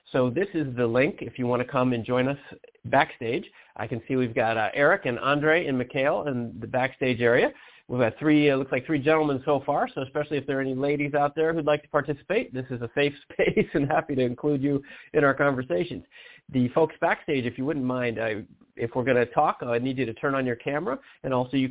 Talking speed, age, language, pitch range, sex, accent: 250 wpm, 40-59, English, 125-155 Hz, male, American